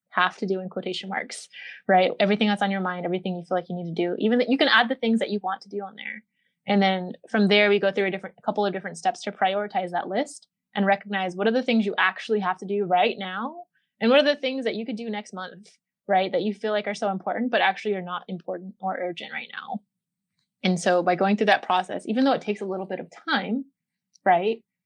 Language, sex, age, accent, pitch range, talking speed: English, female, 20-39, American, 185-210 Hz, 265 wpm